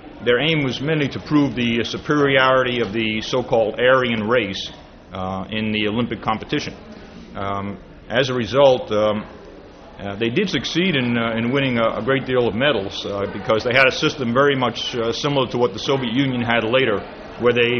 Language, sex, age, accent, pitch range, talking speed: English, male, 40-59, American, 115-140 Hz, 190 wpm